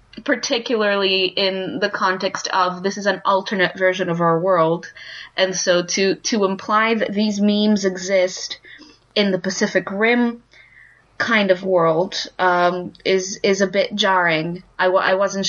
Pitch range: 180-220 Hz